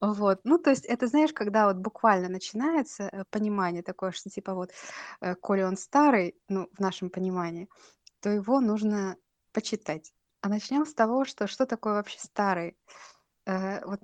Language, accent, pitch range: Russian, native, 190-220 Hz